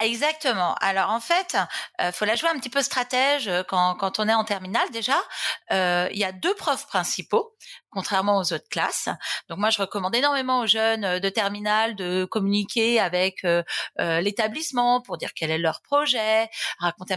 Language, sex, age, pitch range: French, female, 30-49, 195-250 Hz